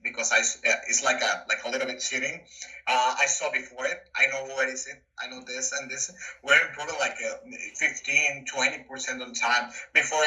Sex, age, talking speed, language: male, 30-49, 205 wpm, English